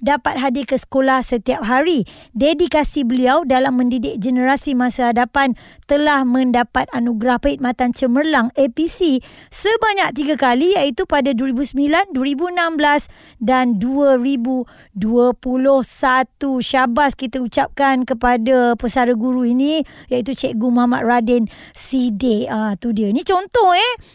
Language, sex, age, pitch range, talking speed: Malay, male, 20-39, 250-305 Hz, 110 wpm